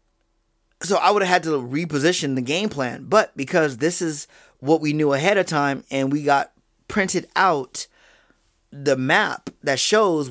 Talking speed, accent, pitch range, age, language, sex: 170 wpm, American, 135-180 Hz, 20-39, English, male